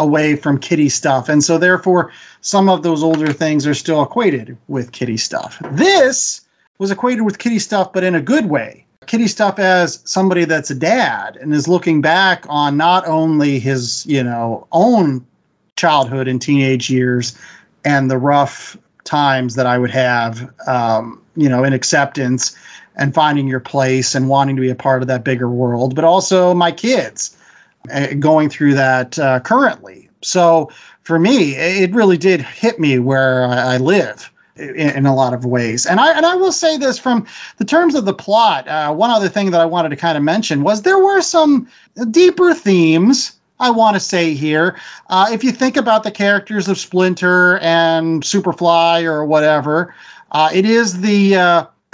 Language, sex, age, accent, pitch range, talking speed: English, male, 40-59, American, 140-195 Hz, 180 wpm